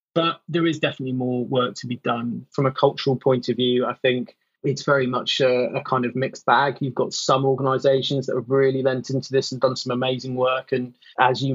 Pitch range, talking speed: 125-135 Hz, 230 wpm